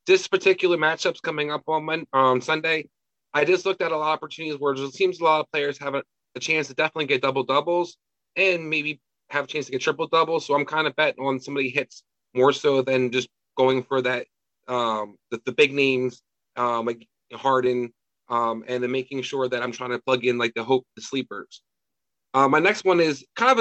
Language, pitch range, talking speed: English, 130-165 Hz, 215 wpm